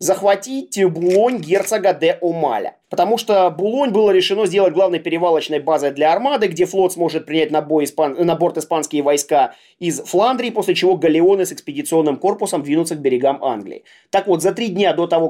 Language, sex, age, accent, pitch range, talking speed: Russian, male, 20-39, native, 155-210 Hz, 180 wpm